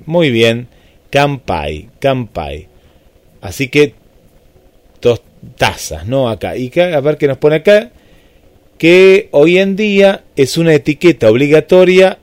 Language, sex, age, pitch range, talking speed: Spanish, male, 30-49, 110-150 Hz, 125 wpm